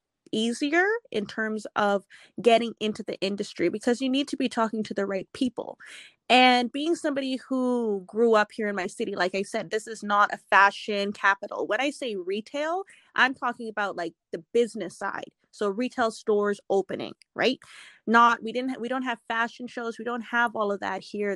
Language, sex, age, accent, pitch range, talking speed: English, female, 20-39, American, 205-255 Hz, 190 wpm